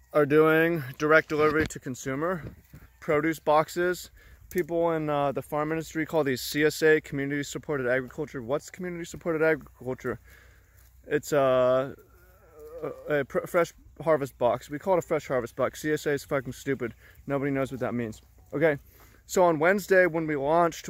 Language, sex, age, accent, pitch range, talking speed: English, male, 20-39, American, 130-160 Hz, 150 wpm